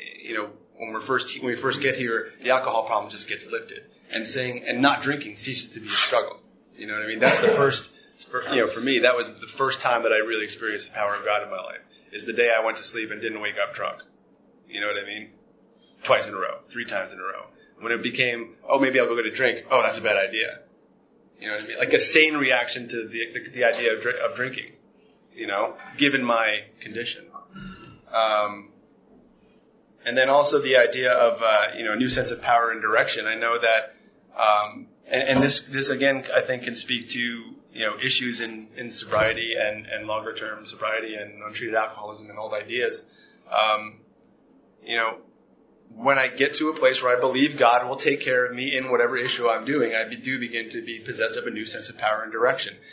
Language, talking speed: English, 230 wpm